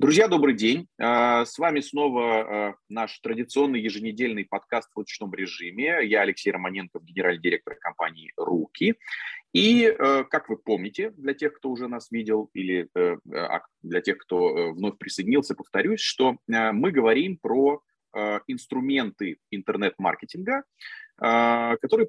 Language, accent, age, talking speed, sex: Russian, native, 30-49, 120 wpm, male